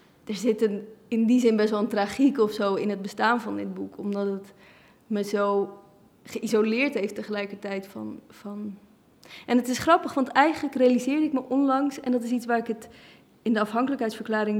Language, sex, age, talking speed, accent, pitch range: Dutch, female, 20-39, 195 wpm, Dutch, 210-240 Hz